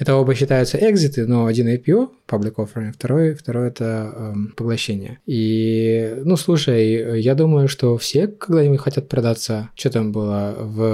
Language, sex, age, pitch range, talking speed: Ukrainian, male, 20-39, 110-135 Hz, 155 wpm